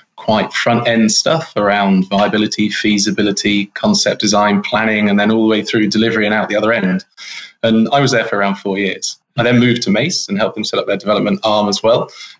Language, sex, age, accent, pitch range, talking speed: English, male, 20-39, British, 100-120 Hz, 220 wpm